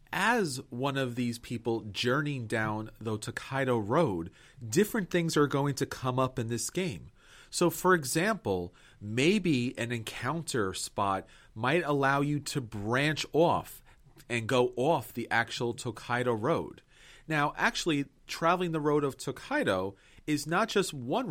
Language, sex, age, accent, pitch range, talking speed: English, male, 40-59, American, 120-165 Hz, 145 wpm